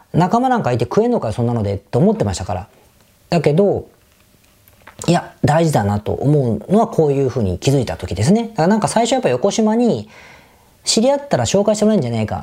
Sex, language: female, Japanese